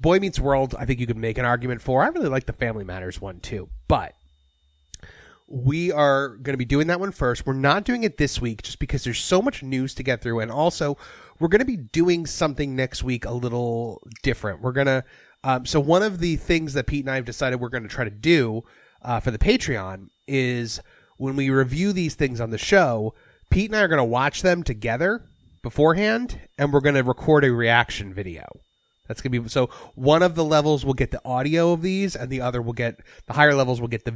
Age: 30-49